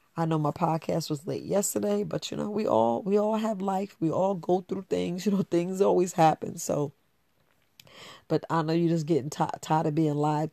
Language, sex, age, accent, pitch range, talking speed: English, female, 40-59, American, 150-170 Hz, 215 wpm